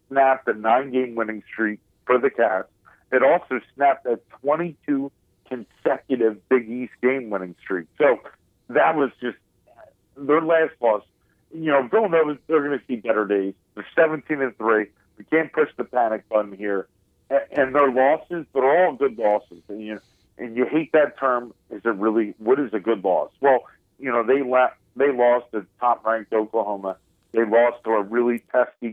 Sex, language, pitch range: male, English, 110-140 Hz